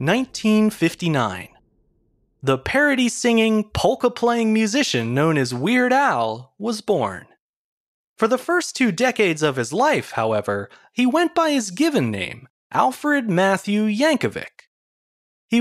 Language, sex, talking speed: English, male, 115 wpm